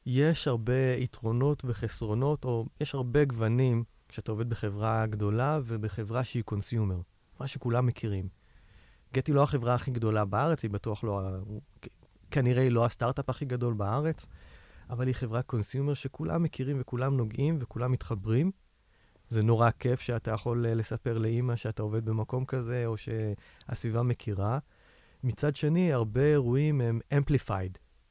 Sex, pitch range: male, 110-135 Hz